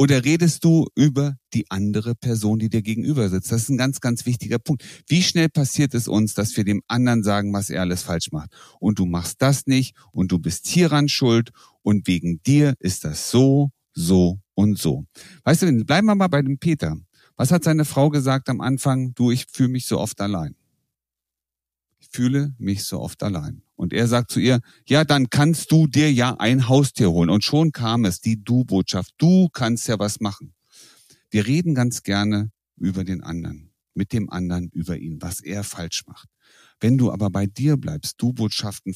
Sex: male